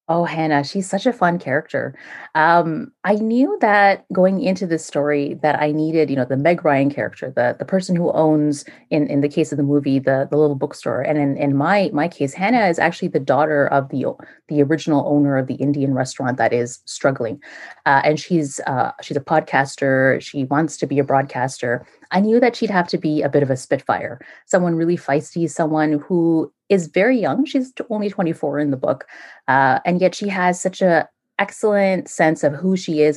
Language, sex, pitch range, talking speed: English, female, 145-185 Hz, 210 wpm